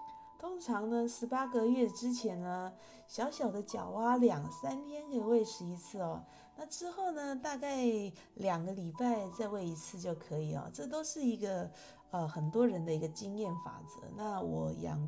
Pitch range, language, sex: 165-245 Hz, Chinese, female